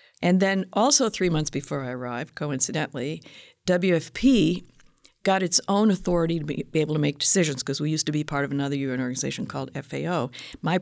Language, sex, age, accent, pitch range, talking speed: English, female, 50-69, American, 160-220 Hz, 190 wpm